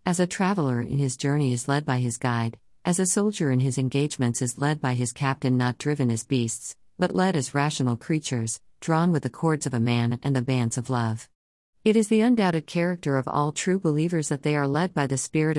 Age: 50-69